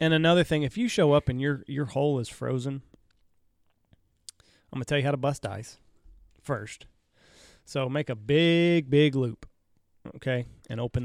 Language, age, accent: English, 30-49, American